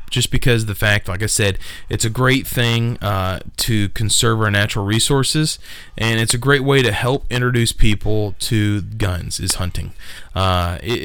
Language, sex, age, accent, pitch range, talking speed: English, male, 20-39, American, 95-120 Hz, 175 wpm